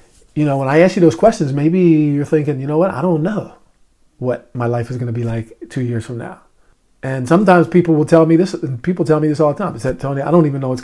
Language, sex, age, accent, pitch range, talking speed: English, male, 50-69, American, 135-175 Hz, 285 wpm